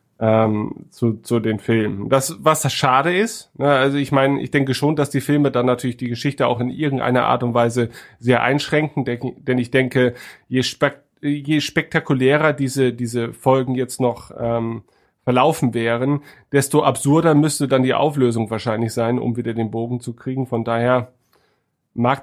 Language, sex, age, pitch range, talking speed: German, male, 30-49, 120-140 Hz, 160 wpm